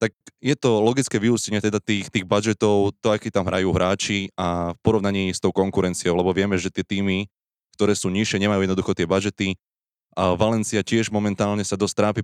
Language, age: Slovak, 20-39